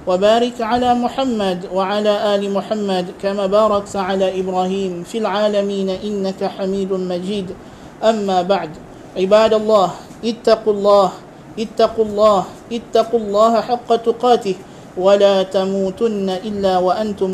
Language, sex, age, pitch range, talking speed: Malay, male, 50-69, 195-225 Hz, 105 wpm